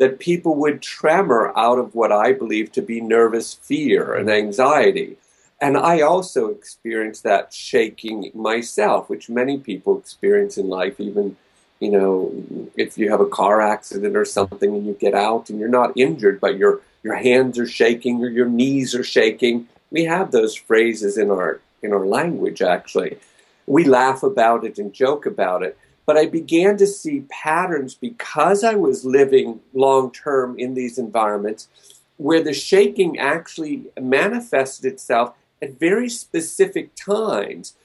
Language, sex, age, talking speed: English, male, 50-69, 160 wpm